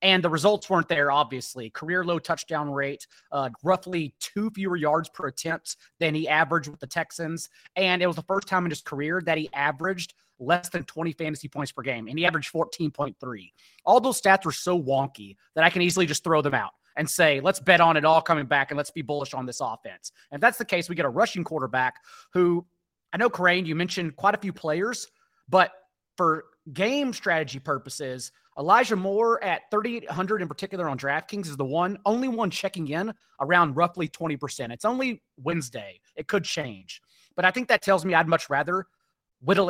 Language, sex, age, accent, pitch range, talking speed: English, male, 30-49, American, 150-190 Hz, 205 wpm